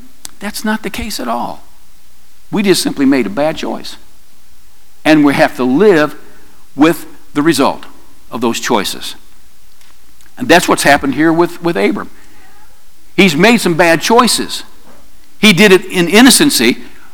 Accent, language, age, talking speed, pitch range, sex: American, English, 60-79, 145 wpm, 160-245 Hz, male